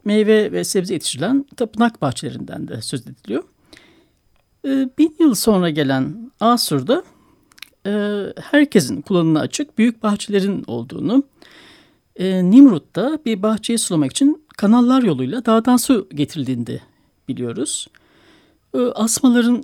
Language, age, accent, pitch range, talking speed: Turkish, 60-79, native, 170-250 Hz, 110 wpm